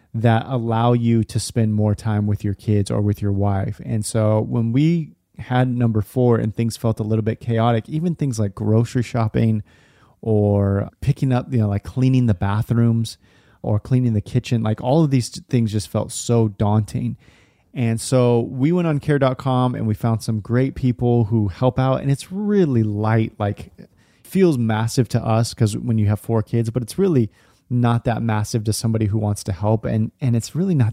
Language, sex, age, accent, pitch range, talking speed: English, male, 30-49, American, 110-125 Hz, 200 wpm